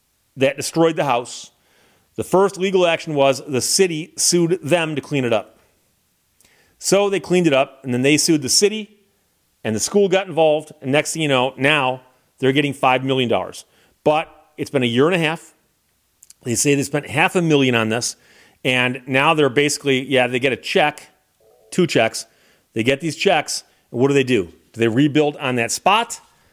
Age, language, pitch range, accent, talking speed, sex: 40-59, English, 130-165 Hz, American, 195 wpm, male